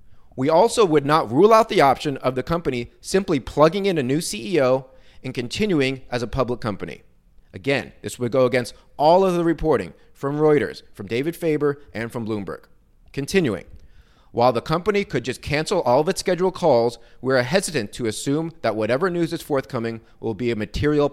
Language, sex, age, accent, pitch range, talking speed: English, male, 30-49, American, 115-160 Hz, 185 wpm